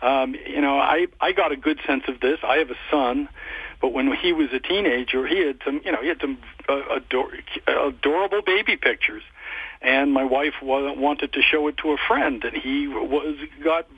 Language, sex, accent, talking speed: English, male, American, 205 wpm